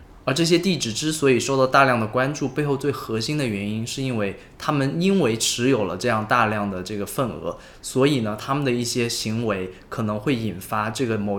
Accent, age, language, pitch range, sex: native, 20-39, Chinese, 110-150 Hz, male